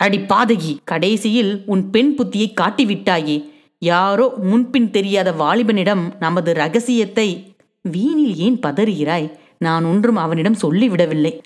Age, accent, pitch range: 30-49, native, 165-230 Hz